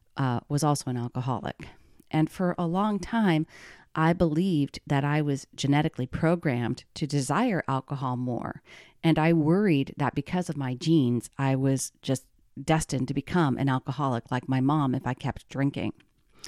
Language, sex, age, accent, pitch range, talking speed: English, female, 40-59, American, 130-165 Hz, 160 wpm